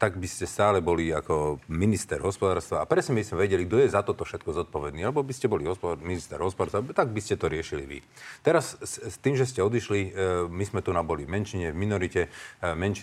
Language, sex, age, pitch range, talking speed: Slovak, male, 40-59, 90-120 Hz, 205 wpm